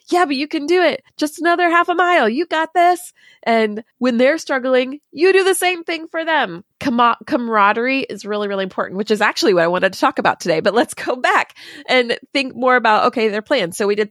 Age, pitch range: 20-39, 190-295 Hz